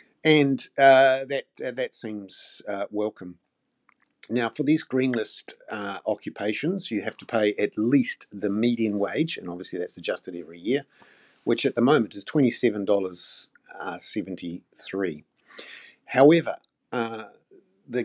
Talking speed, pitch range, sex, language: 135 wpm, 100-125 Hz, male, English